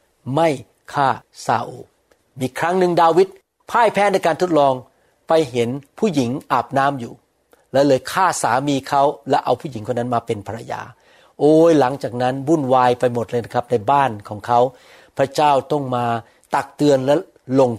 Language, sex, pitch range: Thai, male, 120-160 Hz